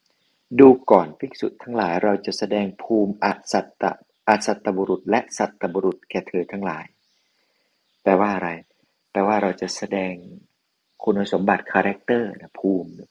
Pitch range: 90-110 Hz